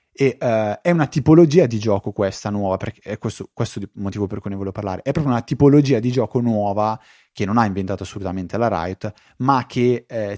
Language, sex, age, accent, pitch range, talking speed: Italian, male, 20-39, native, 100-125 Hz, 215 wpm